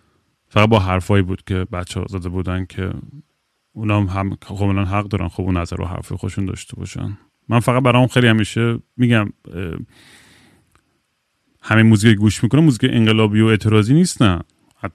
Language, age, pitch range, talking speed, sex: Persian, 30-49, 105-125 Hz, 160 wpm, male